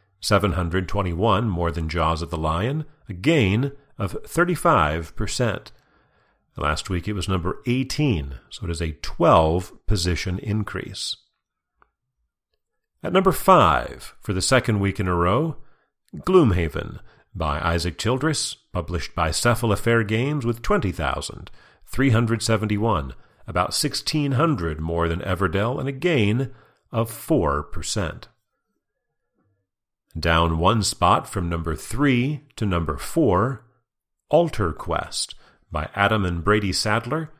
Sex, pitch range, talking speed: male, 85-130 Hz, 110 wpm